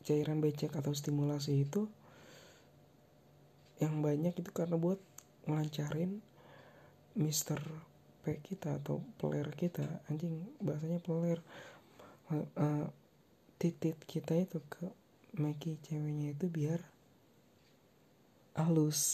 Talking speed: 90 wpm